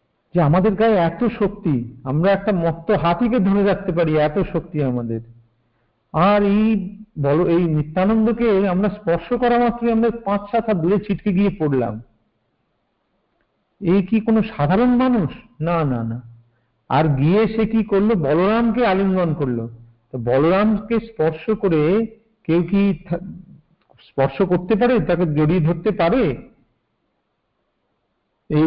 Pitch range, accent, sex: 145-205 Hz, native, male